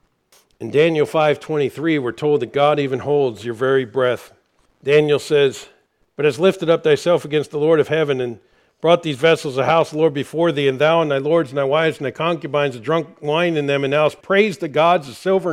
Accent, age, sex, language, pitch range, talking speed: American, 50-69, male, English, 145-185 Hz, 225 wpm